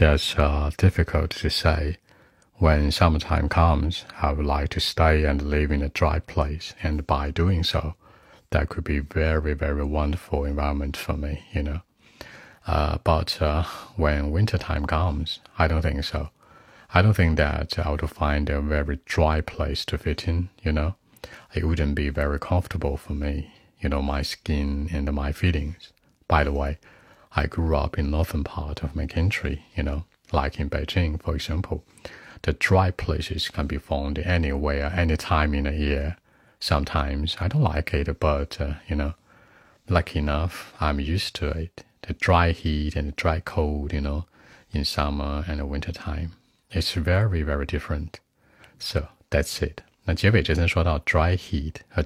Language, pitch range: Chinese, 75-85 Hz